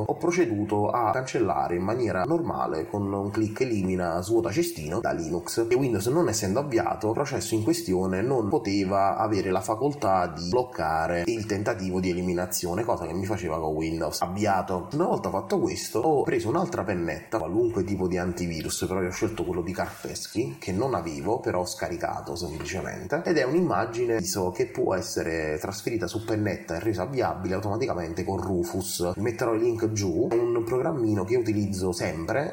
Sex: male